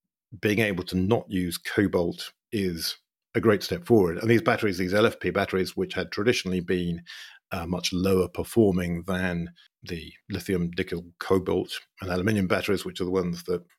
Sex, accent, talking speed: male, British, 165 wpm